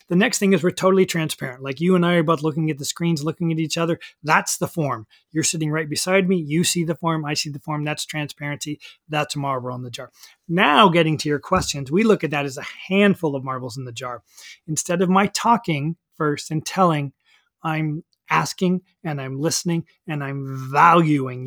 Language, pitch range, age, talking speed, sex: English, 145-180 Hz, 30-49, 215 wpm, male